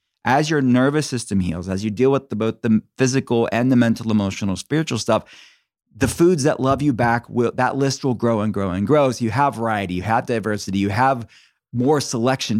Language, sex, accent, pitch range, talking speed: English, male, American, 105-130 Hz, 210 wpm